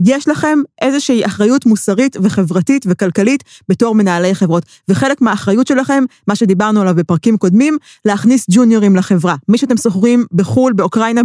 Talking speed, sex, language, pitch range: 140 wpm, female, Hebrew, 180-235 Hz